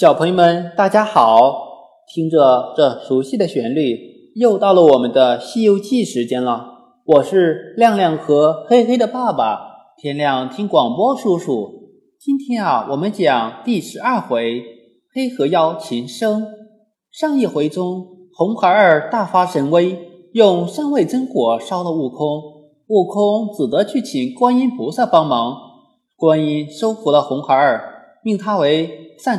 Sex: male